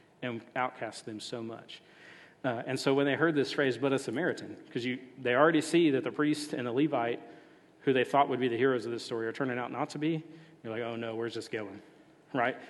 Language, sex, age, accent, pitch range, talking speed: English, male, 40-59, American, 120-155 Hz, 235 wpm